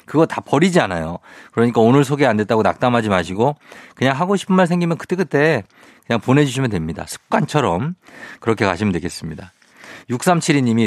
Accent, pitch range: native, 115-165 Hz